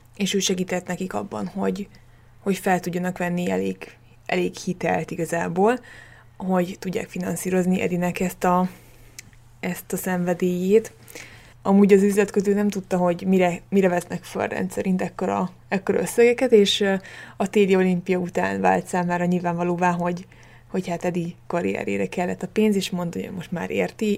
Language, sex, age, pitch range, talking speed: Hungarian, female, 20-39, 170-200 Hz, 145 wpm